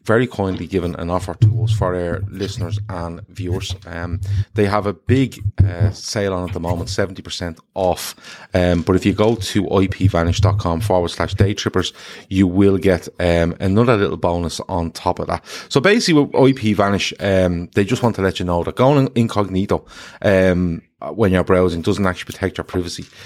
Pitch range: 90-110 Hz